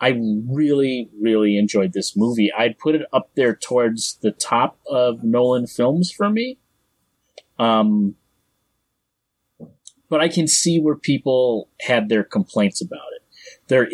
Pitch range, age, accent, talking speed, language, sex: 100-130 Hz, 30-49, American, 140 wpm, English, male